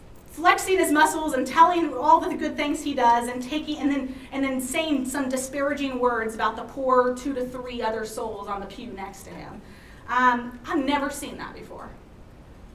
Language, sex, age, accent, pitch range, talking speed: English, female, 30-49, American, 250-315 Hz, 195 wpm